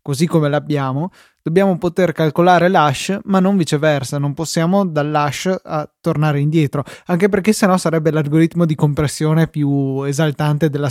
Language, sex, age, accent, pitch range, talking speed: Italian, male, 20-39, native, 145-170 Hz, 145 wpm